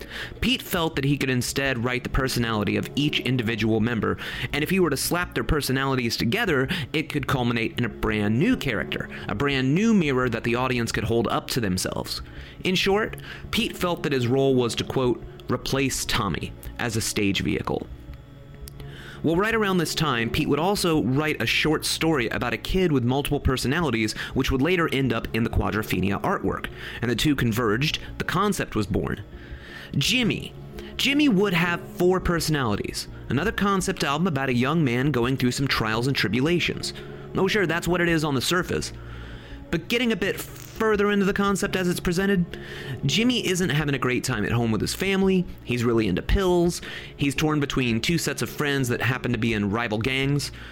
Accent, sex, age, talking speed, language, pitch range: American, male, 30-49, 190 wpm, English, 115-170 Hz